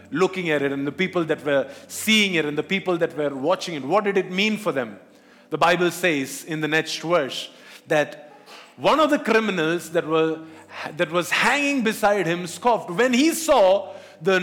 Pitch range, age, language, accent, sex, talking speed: 155-225 Hz, 50-69, English, Indian, male, 190 wpm